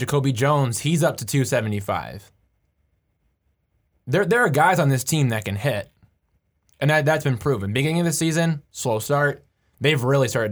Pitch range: 110-135 Hz